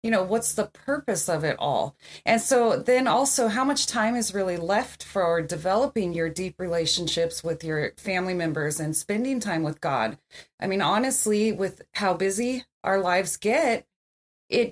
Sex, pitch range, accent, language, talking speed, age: female, 180-225 Hz, American, English, 170 wpm, 30-49